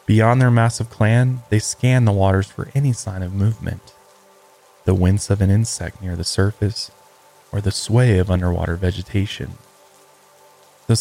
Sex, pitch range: male, 95-120 Hz